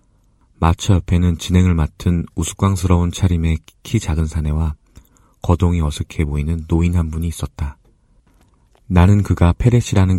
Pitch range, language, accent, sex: 80-95 Hz, Korean, native, male